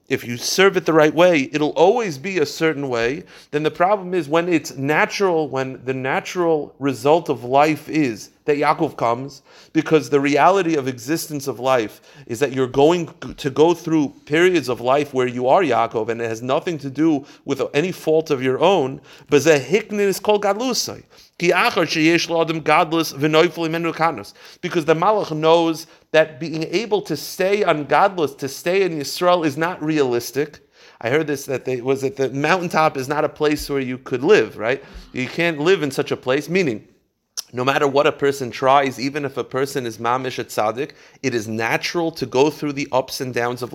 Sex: male